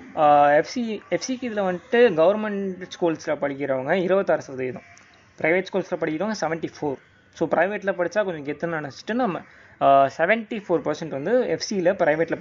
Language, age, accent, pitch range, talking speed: Tamil, 20-39, native, 145-190 Hz, 125 wpm